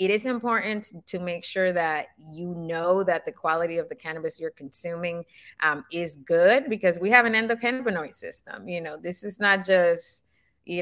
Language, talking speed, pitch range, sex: English, 185 wpm, 165-210 Hz, female